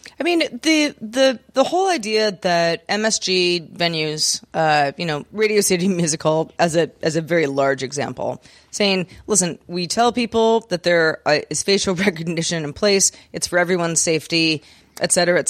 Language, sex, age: English, female, 30-49